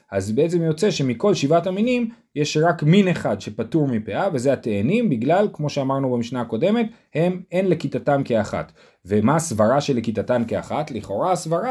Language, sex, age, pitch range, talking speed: Hebrew, male, 30-49, 110-175 Hz, 155 wpm